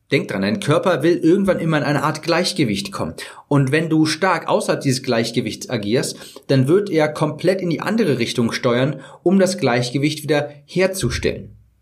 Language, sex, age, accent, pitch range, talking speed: German, male, 40-59, German, 130-165 Hz, 175 wpm